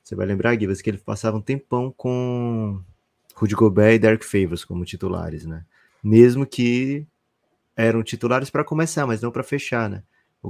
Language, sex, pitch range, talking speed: Portuguese, male, 90-120 Hz, 170 wpm